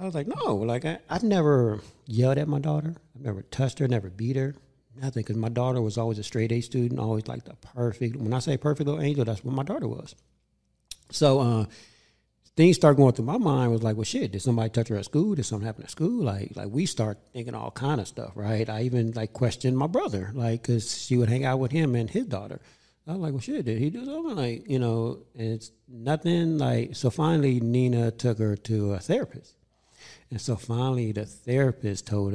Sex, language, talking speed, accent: male, English, 230 wpm, American